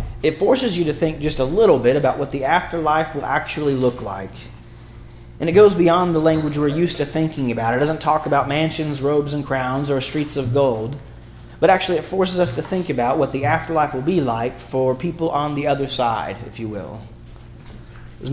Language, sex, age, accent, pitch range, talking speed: English, male, 30-49, American, 125-160 Hz, 210 wpm